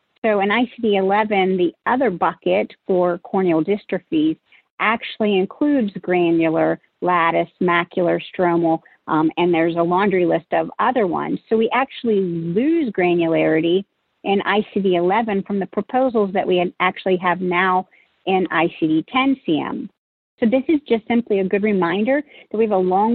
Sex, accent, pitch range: female, American, 180-220 Hz